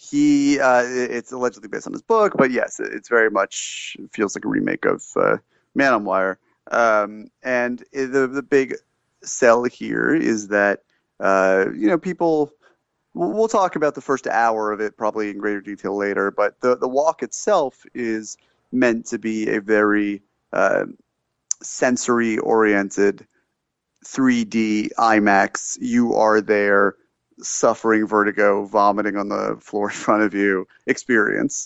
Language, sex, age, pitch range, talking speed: English, male, 30-49, 105-135 Hz, 150 wpm